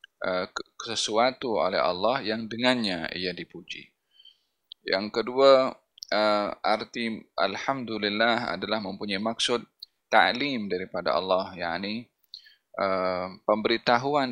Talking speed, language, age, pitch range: 80 wpm, Malay, 20-39, 100-120 Hz